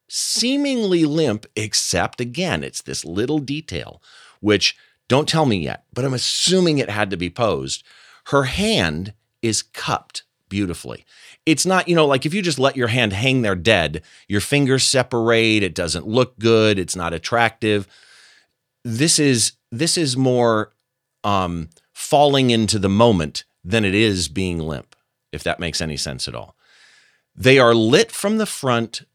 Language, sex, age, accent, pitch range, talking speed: English, male, 40-59, American, 95-135 Hz, 160 wpm